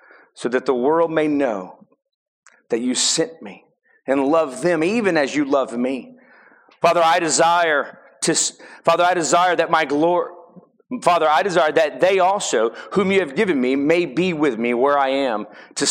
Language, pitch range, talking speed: English, 145-185 Hz, 140 wpm